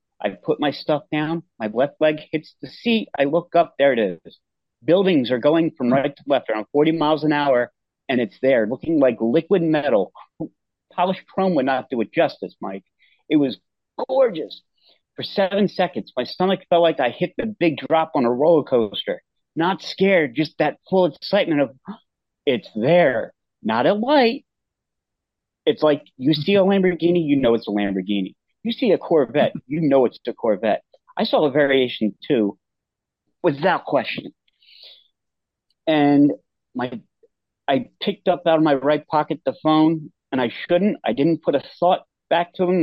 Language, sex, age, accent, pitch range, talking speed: English, male, 40-59, American, 135-175 Hz, 175 wpm